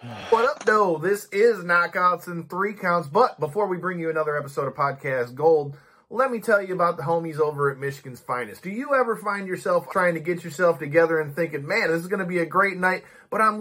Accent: American